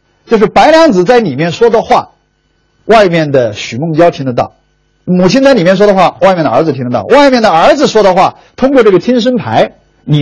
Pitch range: 115-180 Hz